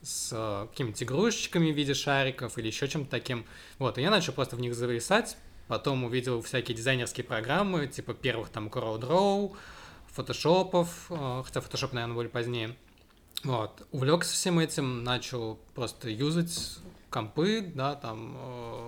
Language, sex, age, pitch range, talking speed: Russian, male, 20-39, 115-155 Hz, 140 wpm